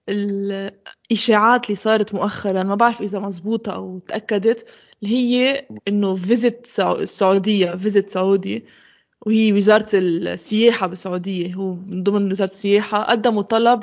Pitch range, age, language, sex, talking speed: 200-230 Hz, 20-39, Arabic, female, 115 wpm